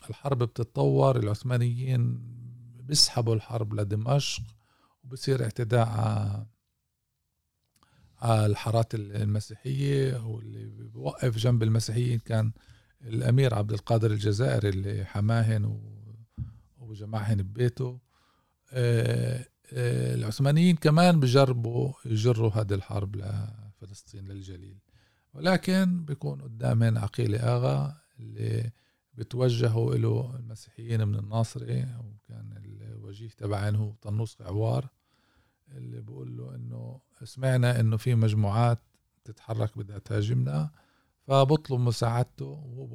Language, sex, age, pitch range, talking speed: Arabic, male, 50-69, 105-125 Hz, 90 wpm